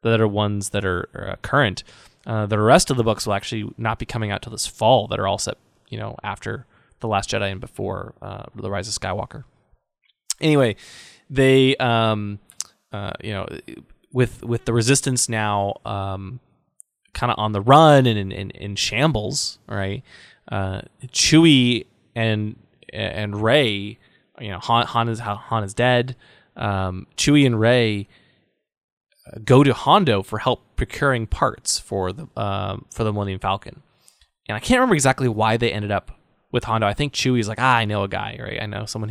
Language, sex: English, male